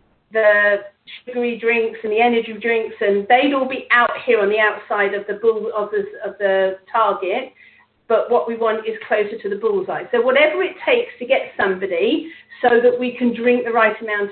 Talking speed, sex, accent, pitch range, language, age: 200 wpm, female, British, 220-290 Hz, English, 40-59